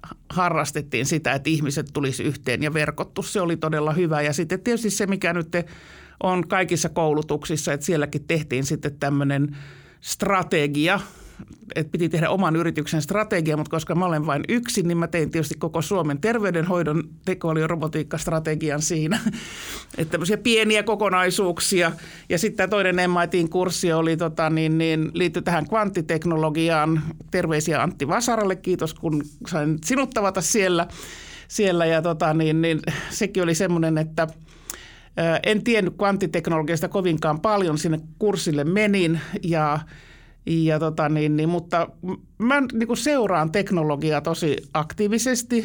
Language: Finnish